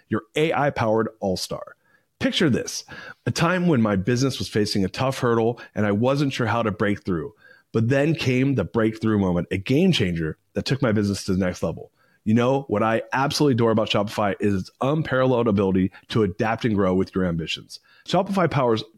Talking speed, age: 195 wpm, 30-49